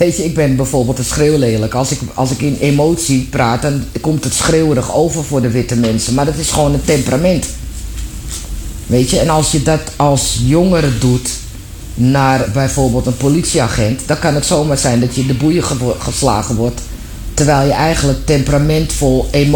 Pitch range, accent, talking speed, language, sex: 115-145 Hz, Dutch, 175 wpm, Dutch, female